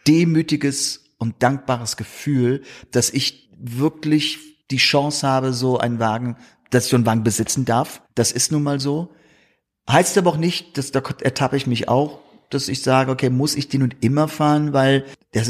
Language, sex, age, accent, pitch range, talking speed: German, male, 40-59, German, 115-150 Hz, 180 wpm